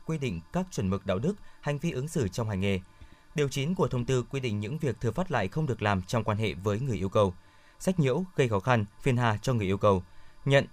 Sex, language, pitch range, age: male, Vietnamese, 105-145 Hz, 20-39